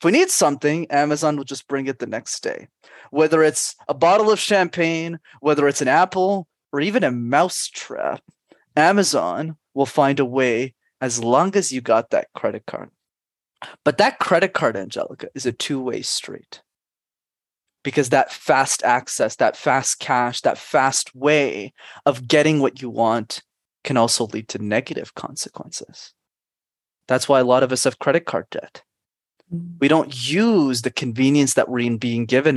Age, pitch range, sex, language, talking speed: 20-39, 125-165 Hz, male, English, 160 wpm